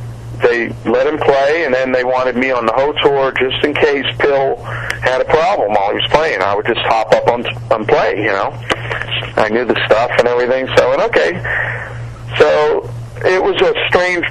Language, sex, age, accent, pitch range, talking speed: English, male, 40-59, American, 115-165 Hz, 205 wpm